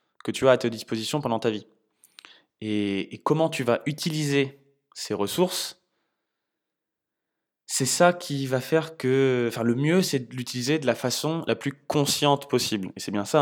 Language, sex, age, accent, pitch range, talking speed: French, male, 20-39, French, 115-140 Hz, 180 wpm